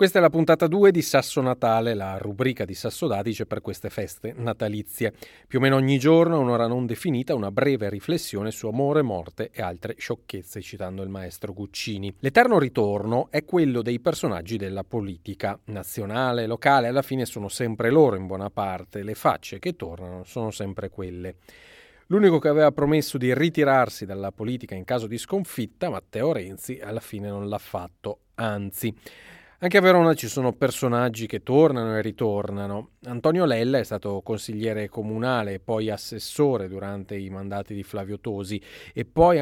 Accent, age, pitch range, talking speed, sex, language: native, 40-59, 100-135 Hz, 165 wpm, male, Italian